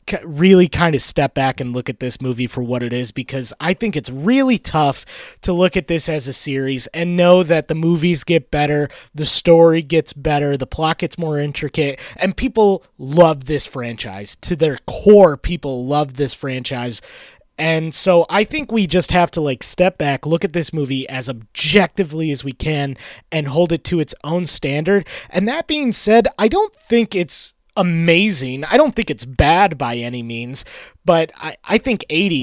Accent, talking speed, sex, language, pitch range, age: American, 190 wpm, male, English, 135-180 Hz, 20-39